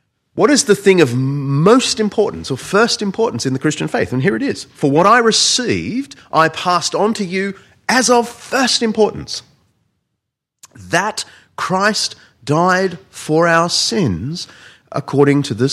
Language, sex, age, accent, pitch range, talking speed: English, male, 30-49, Australian, 110-185 Hz, 155 wpm